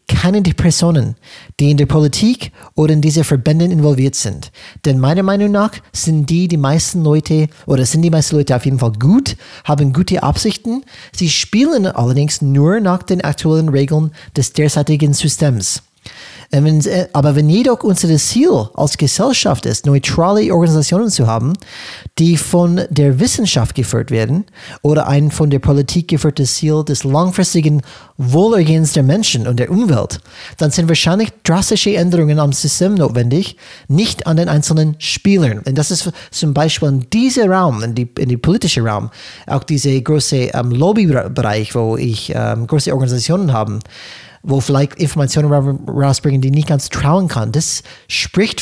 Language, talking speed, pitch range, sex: German, 155 wpm, 135-175 Hz, male